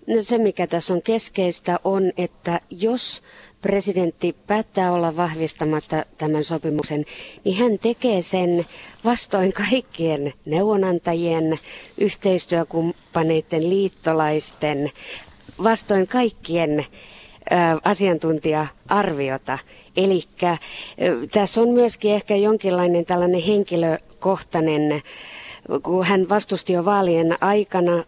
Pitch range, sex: 160-190 Hz, female